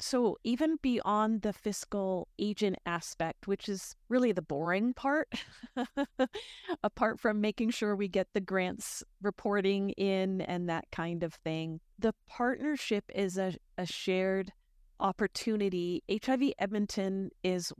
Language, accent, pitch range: English, American, 175-210 Hz